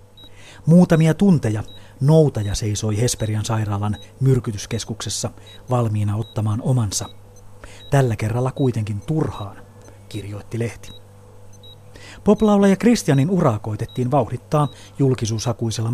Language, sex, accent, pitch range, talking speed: Finnish, male, native, 100-135 Hz, 85 wpm